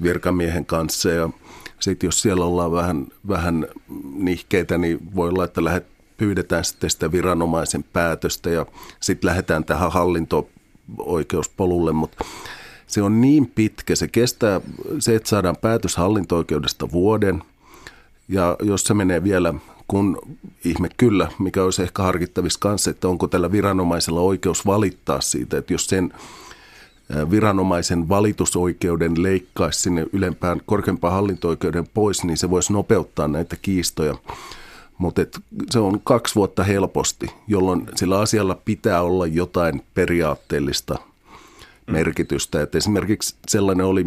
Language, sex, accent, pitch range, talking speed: Finnish, male, native, 85-100 Hz, 125 wpm